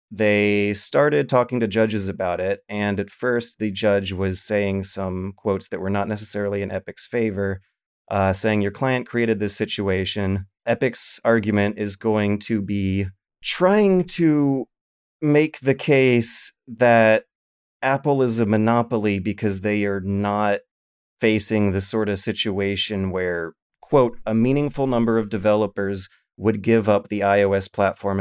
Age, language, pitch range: 30-49, English, 100-120 Hz